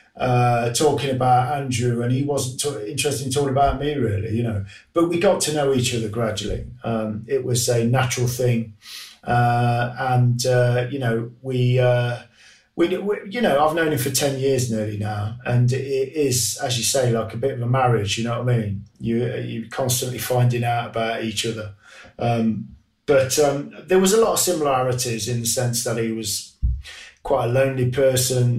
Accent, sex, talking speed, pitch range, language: British, male, 195 wpm, 115-130 Hz, English